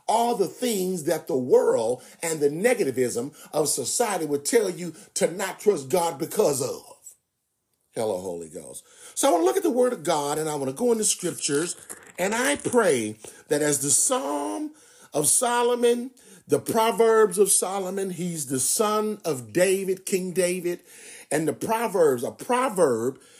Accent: American